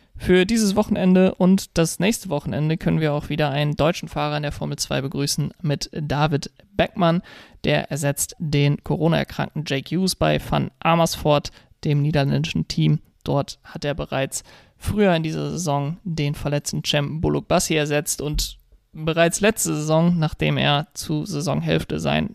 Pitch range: 145-170 Hz